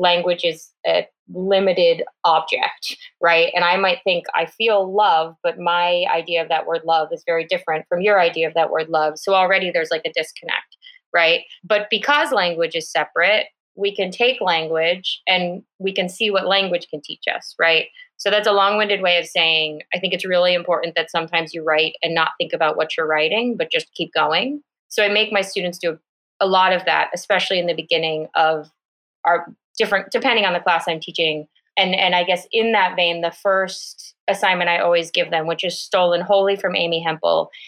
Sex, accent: female, American